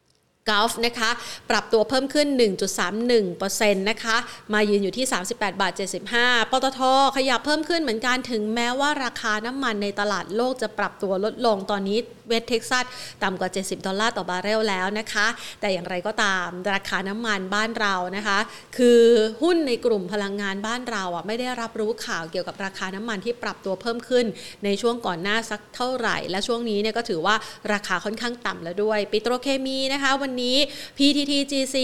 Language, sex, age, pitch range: Thai, female, 30-49, 200-245 Hz